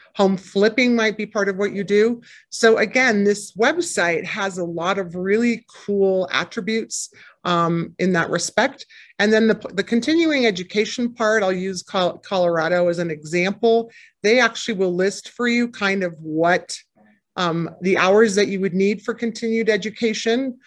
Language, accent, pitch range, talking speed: English, American, 175-215 Hz, 165 wpm